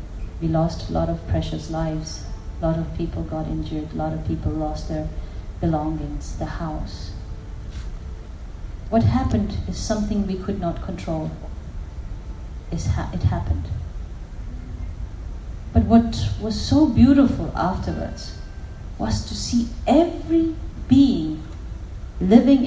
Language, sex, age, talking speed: English, female, 30-49, 120 wpm